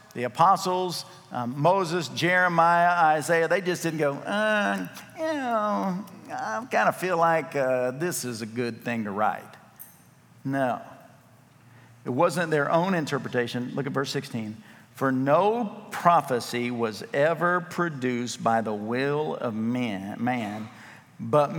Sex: male